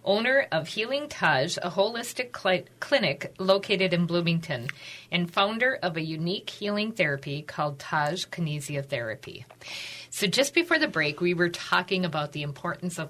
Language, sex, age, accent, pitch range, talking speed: English, female, 50-69, American, 145-190 Hz, 155 wpm